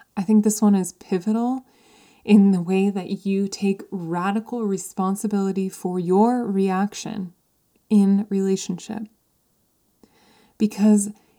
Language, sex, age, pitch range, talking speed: English, female, 20-39, 200-245 Hz, 105 wpm